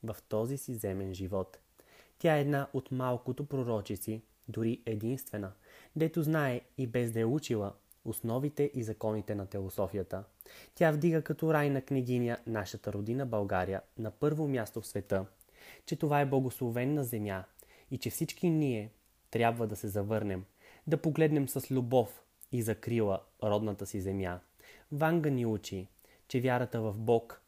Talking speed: 150 wpm